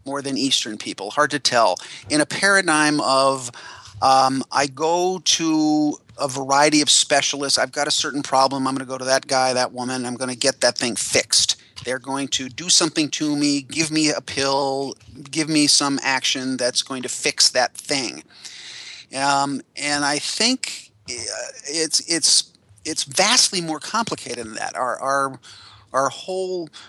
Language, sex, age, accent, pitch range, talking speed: English, male, 30-49, American, 130-160 Hz, 170 wpm